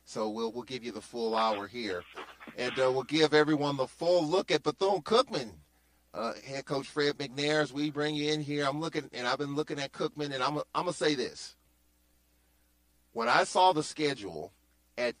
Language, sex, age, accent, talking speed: English, male, 40-59, American, 200 wpm